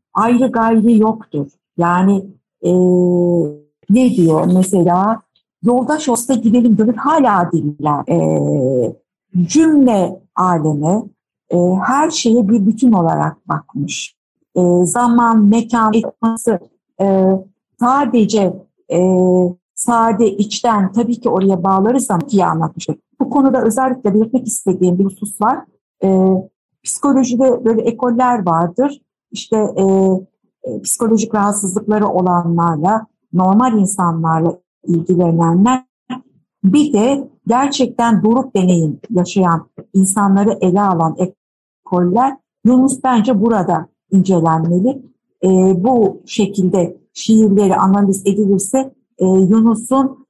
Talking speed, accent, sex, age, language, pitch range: 100 wpm, native, female, 60-79, Turkish, 180-235 Hz